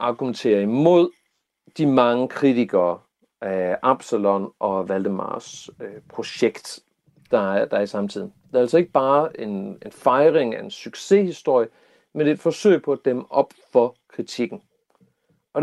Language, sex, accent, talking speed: Danish, male, native, 130 wpm